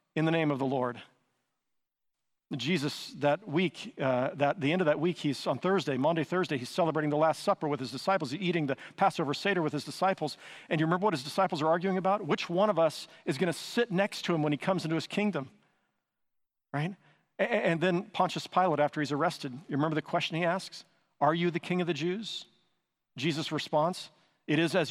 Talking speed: 210 wpm